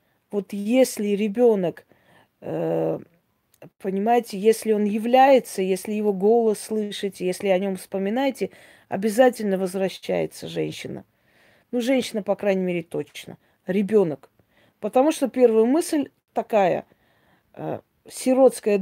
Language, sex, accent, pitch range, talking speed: Russian, female, native, 190-235 Hz, 100 wpm